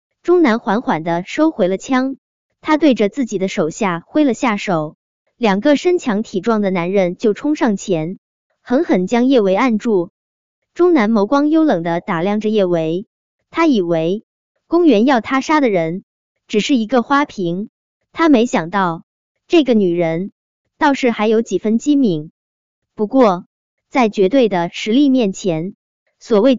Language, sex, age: Chinese, male, 20-39